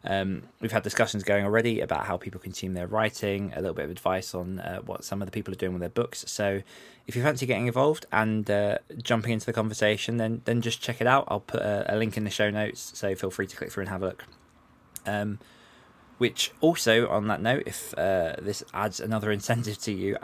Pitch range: 100-115 Hz